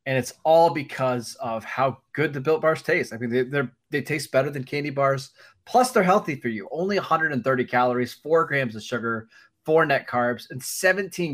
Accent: American